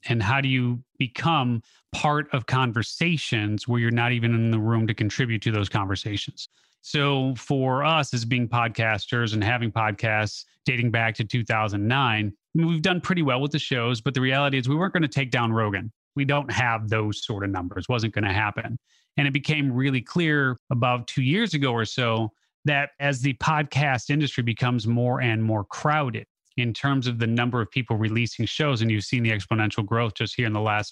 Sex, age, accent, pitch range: male, 30-49, American, 115-140 Hz